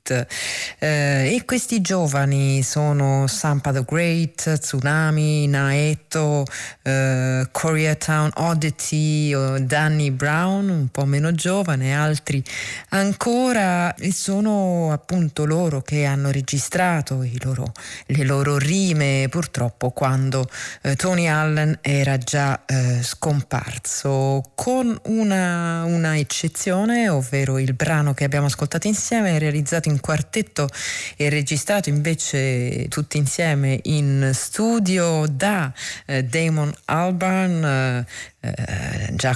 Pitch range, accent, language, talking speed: 135-170 Hz, native, Italian, 110 wpm